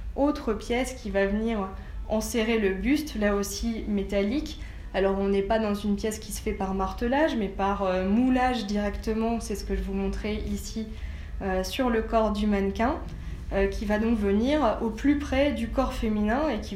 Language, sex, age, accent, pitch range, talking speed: French, female, 20-39, French, 195-225 Hz, 195 wpm